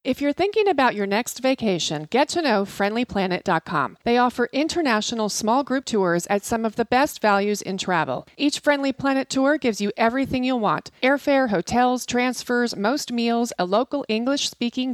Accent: American